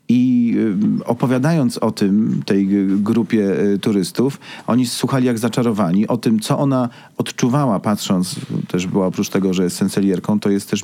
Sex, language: male, Polish